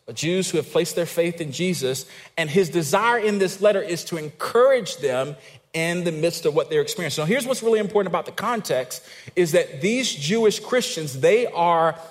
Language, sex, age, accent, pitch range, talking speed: English, male, 40-59, American, 155-210 Hz, 200 wpm